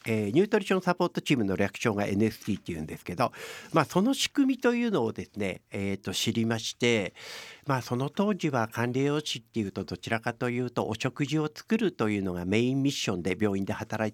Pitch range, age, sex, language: 105-150 Hz, 50-69, male, Japanese